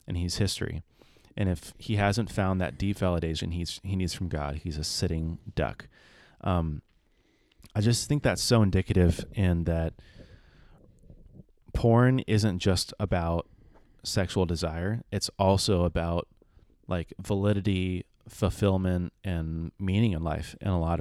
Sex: male